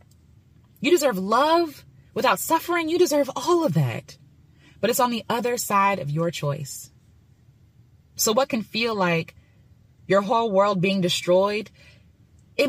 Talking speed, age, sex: 140 wpm, 20-39, female